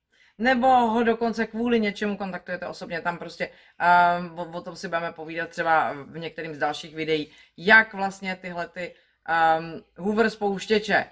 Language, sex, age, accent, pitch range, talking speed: Czech, female, 30-49, native, 155-205 Hz, 150 wpm